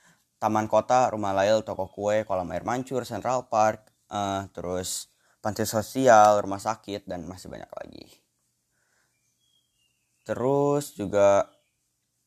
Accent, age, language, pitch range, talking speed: native, 10-29, Indonesian, 95-115 Hz, 110 wpm